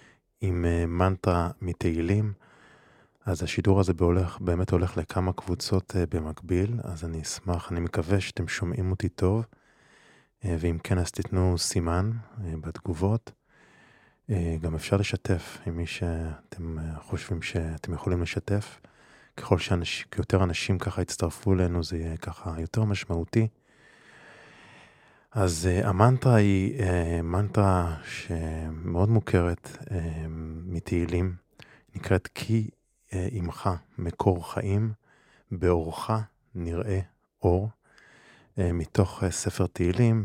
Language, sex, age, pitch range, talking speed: Hebrew, male, 20-39, 85-100 Hz, 105 wpm